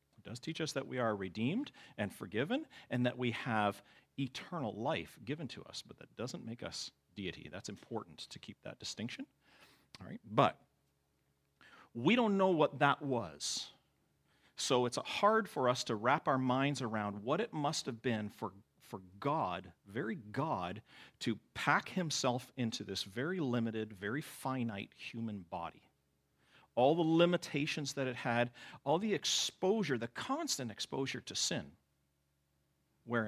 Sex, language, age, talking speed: male, English, 40-59, 155 wpm